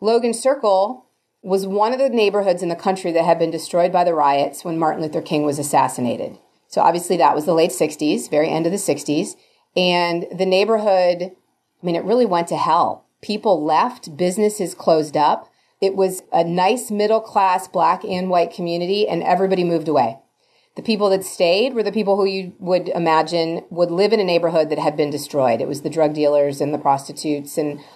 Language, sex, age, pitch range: English, female, 30-49, 155-195 Hz